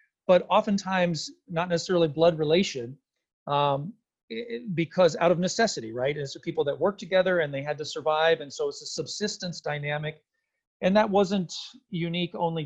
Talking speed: 160 wpm